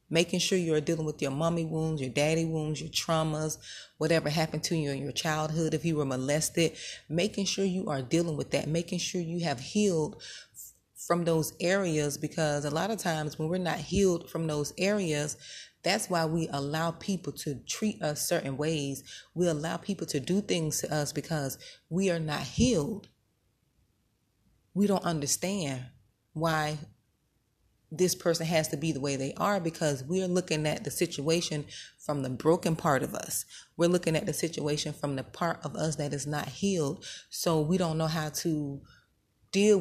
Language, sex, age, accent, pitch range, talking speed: English, female, 30-49, American, 145-170 Hz, 180 wpm